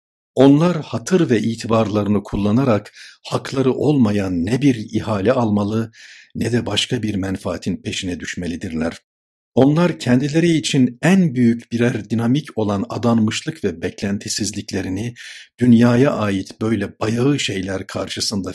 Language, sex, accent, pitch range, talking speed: Turkish, male, native, 100-125 Hz, 115 wpm